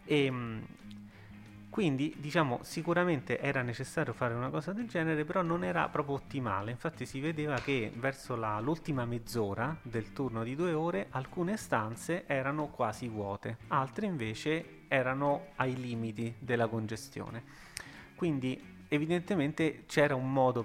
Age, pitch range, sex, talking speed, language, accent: 30-49, 110-140 Hz, male, 135 wpm, Italian, native